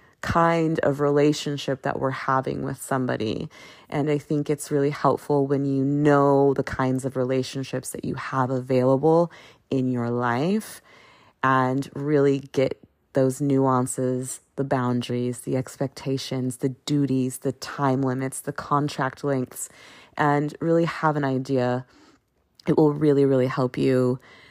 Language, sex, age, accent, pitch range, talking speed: English, female, 30-49, American, 130-145 Hz, 135 wpm